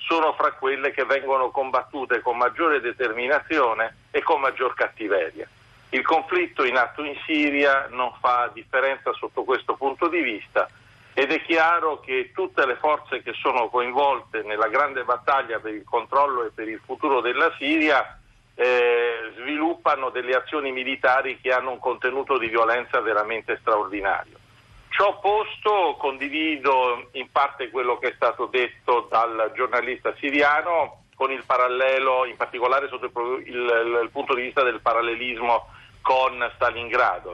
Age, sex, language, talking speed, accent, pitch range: 50-69, male, Italian, 145 wpm, native, 125-185 Hz